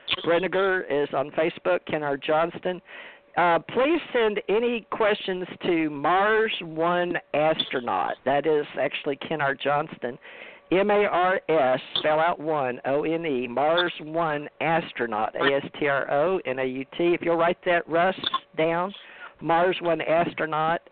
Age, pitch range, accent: 50-69, 145-180 Hz, American